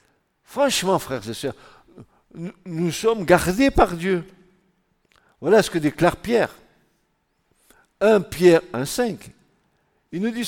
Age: 60-79